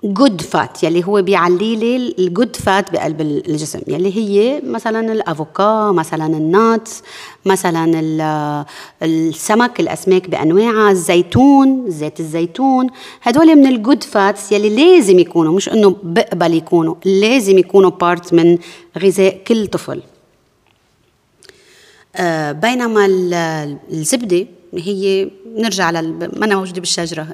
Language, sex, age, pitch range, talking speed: Arabic, female, 30-49, 170-225 Hz, 115 wpm